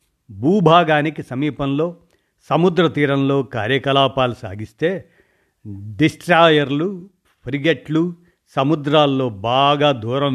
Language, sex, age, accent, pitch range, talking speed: Telugu, male, 50-69, native, 125-150 Hz, 65 wpm